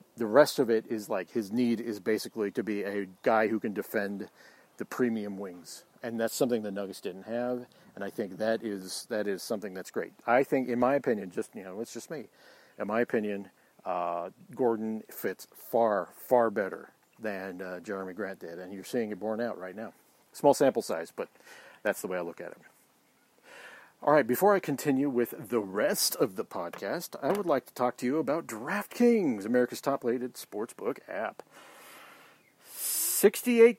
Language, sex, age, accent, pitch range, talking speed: English, male, 50-69, American, 110-180 Hz, 185 wpm